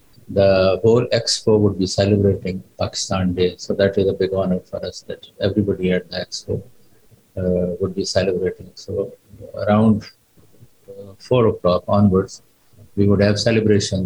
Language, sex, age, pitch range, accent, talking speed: English, male, 50-69, 95-105 Hz, Indian, 150 wpm